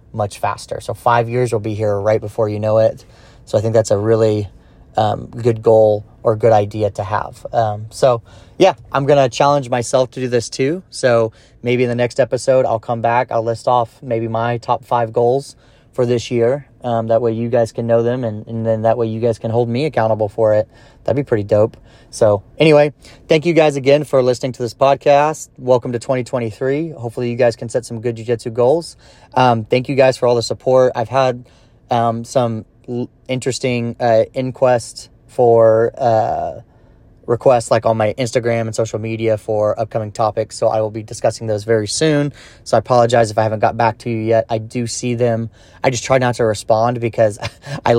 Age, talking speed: 30-49, 210 wpm